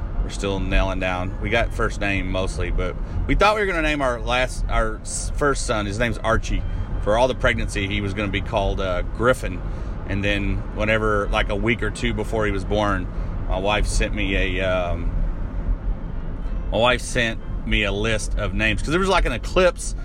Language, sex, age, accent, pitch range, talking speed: English, male, 30-49, American, 90-110 Hz, 205 wpm